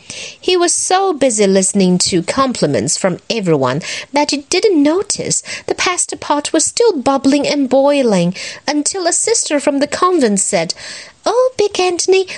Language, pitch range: Chinese, 250-345 Hz